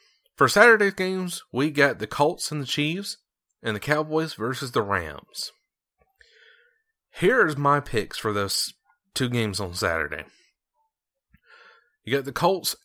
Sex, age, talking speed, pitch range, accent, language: male, 30-49, 140 wpm, 115-195 Hz, American, English